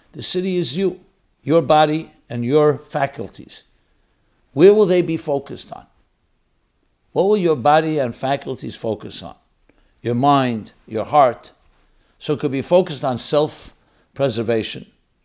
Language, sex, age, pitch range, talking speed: English, male, 60-79, 130-185 Hz, 135 wpm